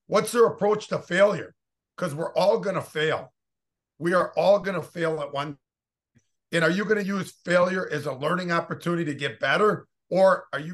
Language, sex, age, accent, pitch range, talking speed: English, male, 50-69, American, 145-170 Hz, 200 wpm